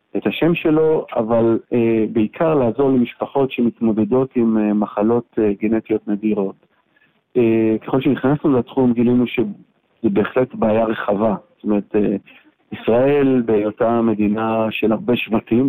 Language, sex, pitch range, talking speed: Hebrew, male, 110-125 Hz, 125 wpm